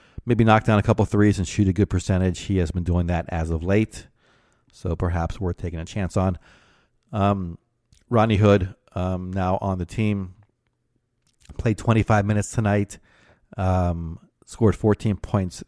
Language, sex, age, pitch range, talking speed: English, male, 40-59, 90-110 Hz, 160 wpm